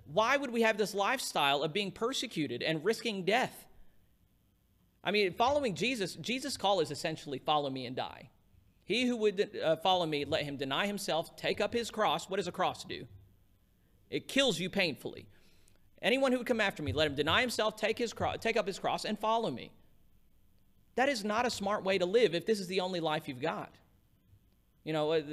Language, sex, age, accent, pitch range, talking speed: English, male, 40-59, American, 145-210 Hz, 200 wpm